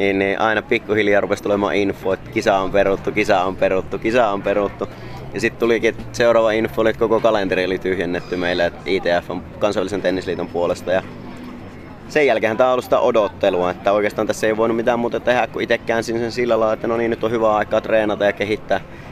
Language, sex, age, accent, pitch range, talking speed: Finnish, male, 30-49, native, 95-115 Hz, 205 wpm